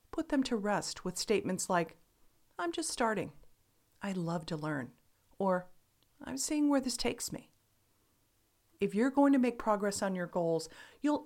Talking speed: 165 wpm